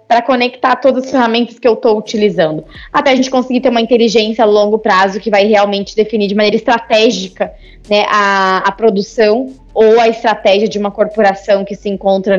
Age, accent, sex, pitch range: 20-39, Brazilian, female, 200-240 Hz